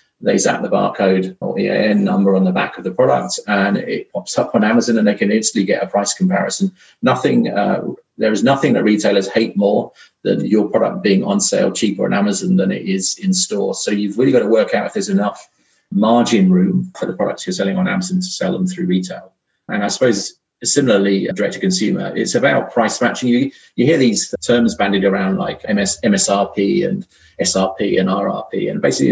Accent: British